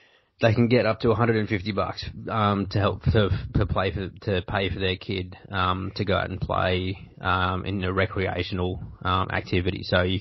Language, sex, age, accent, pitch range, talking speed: English, male, 20-39, Australian, 95-105 Hz, 195 wpm